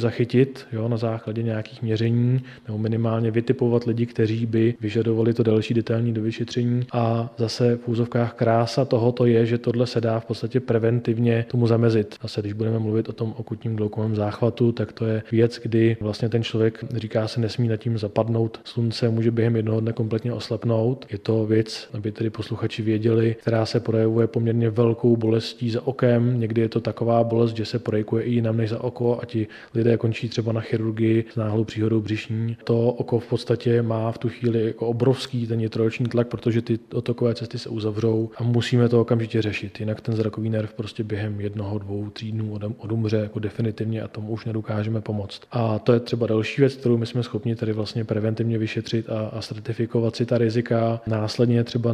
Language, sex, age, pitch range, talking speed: Czech, male, 20-39, 110-120 Hz, 190 wpm